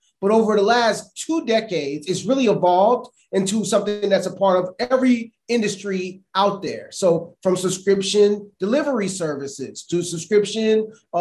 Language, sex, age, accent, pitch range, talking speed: English, male, 30-49, American, 175-230 Hz, 140 wpm